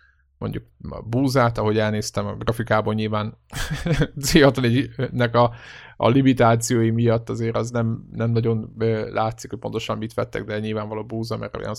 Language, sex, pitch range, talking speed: Hungarian, male, 105-125 Hz, 145 wpm